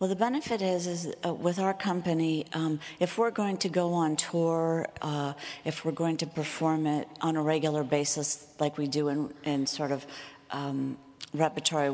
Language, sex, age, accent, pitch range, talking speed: English, female, 50-69, American, 145-165 Hz, 185 wpm